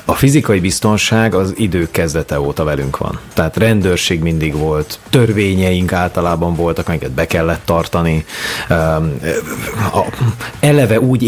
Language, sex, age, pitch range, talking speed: Hungarian, male, 30-49, 80-100 Hz, 130 wpm